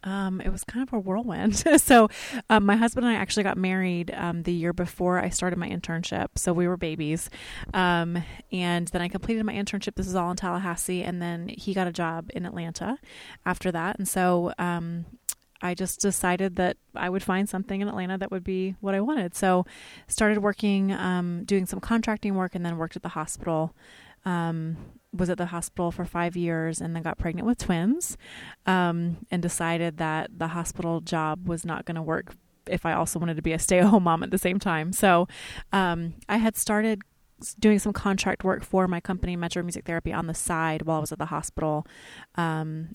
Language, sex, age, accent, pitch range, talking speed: English, female, 20-39, American, 170-195 Hz, 210 wpm